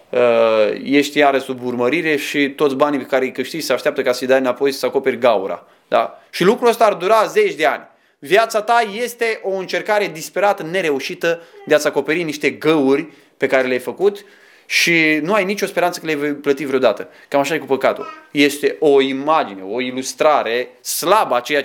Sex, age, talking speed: male, 20-39, 190 wpm